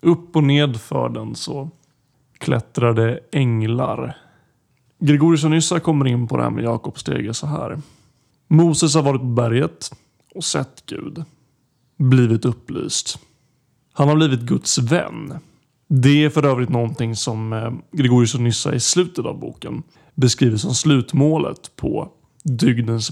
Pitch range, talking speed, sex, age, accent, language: 125-160 Hz, 140 wpm, male, 30-49, native, Swedish